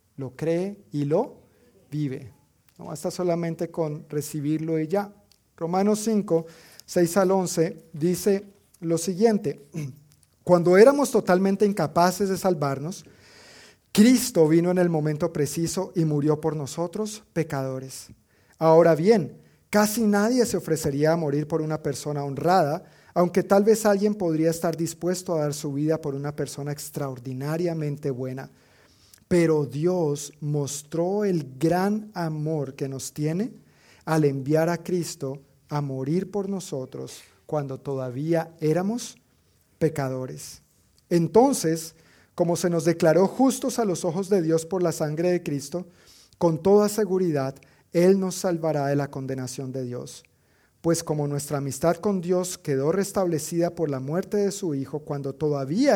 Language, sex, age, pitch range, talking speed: Spanish, male, 40-59, 145-185 Hz, 140 wpm